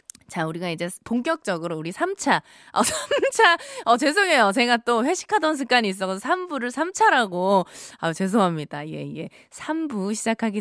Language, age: Korean, 20-39